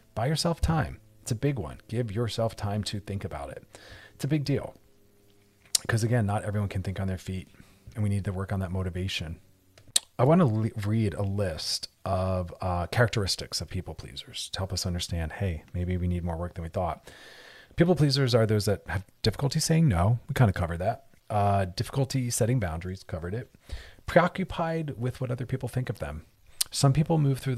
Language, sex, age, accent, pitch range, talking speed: English, male, 30-49, American, 95-130 Hz, 200 wpm